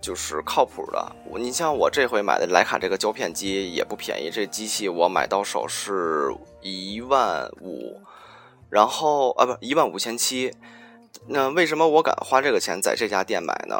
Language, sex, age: Chinese, male, 20-39